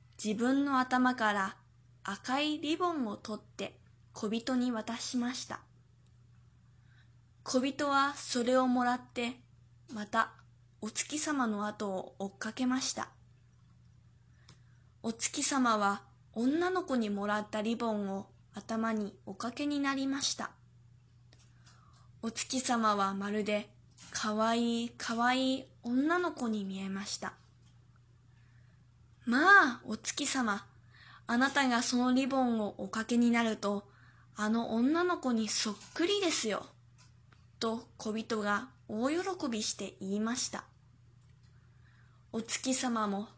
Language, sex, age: Chinese, female, 20-39